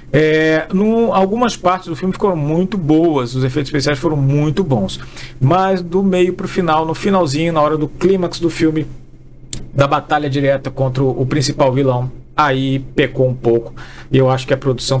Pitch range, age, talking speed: 130-160 Hz, 40-59, 170 wpm